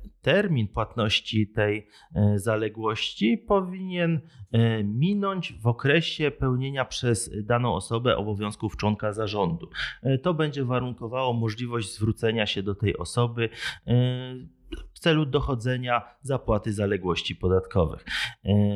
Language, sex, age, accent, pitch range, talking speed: Polish, male, 30-49, native, 105-135 Hz, 95 wpm